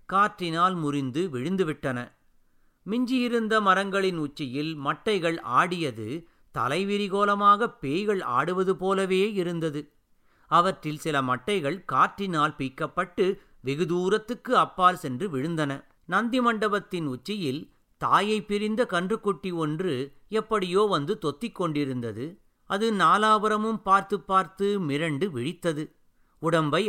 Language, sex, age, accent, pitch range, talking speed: Tamil, male, 50-69, native, 150-205 Hz, 90 wpm